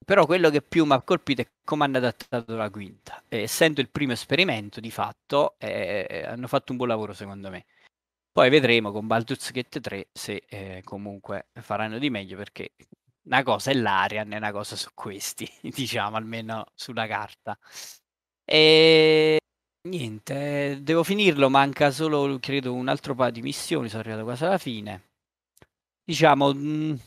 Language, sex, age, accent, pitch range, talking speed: Italian, male, 20-39, native, 105-135 Hz, 160 wpm